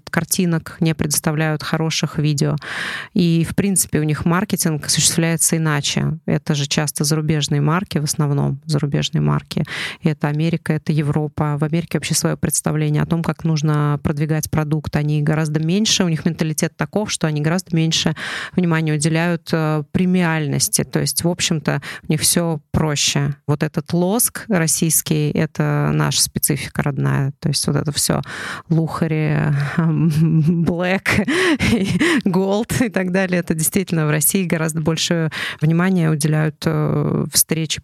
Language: Russian